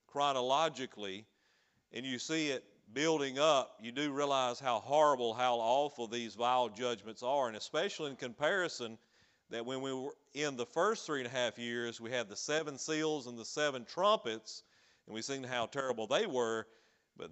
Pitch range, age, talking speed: 115-135 Hz, 40-59, 175 wpm